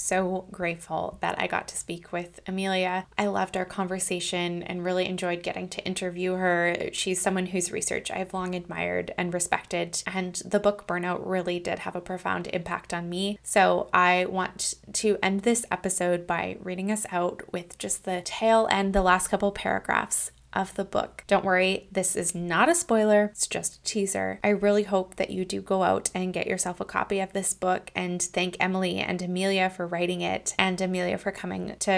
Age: 20-39